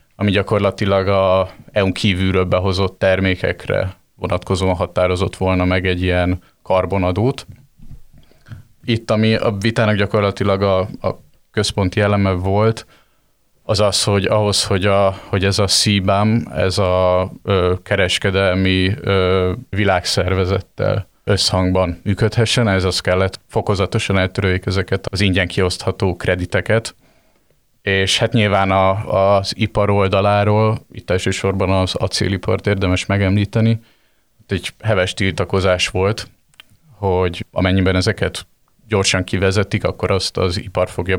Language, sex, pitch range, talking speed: Hungarian, male, 95-105 Hz, 110 wpm